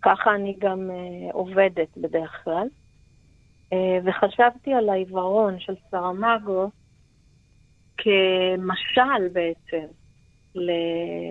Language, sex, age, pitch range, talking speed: Hebrew, female, 40-59, 190-230 Hz, 75 wpm